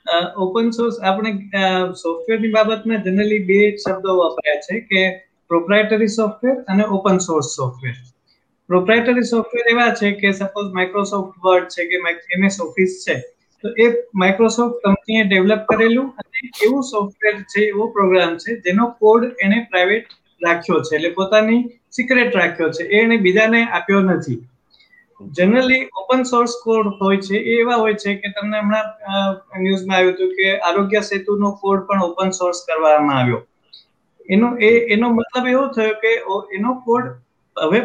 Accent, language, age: native, Gujarati, 20-39